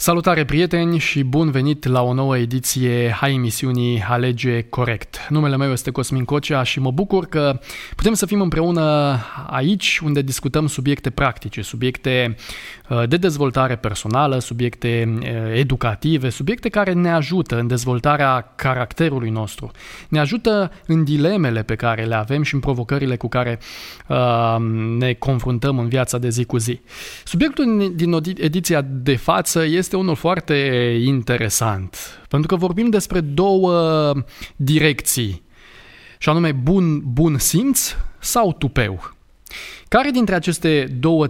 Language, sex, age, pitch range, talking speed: Romanian, male, 20-39, 125-165 Hz, 135 wpm